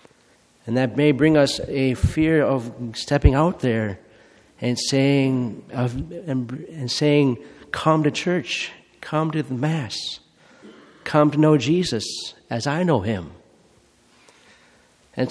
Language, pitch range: English, 120-160 Hz